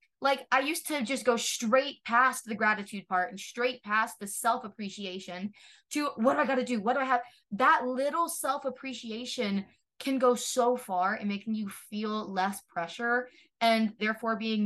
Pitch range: 190-245 Hz